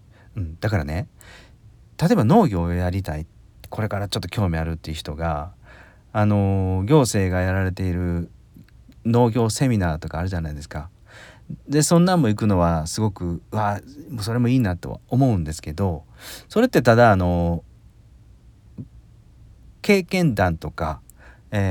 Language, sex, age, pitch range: Japanese, male, 40-59, 85-120 Hz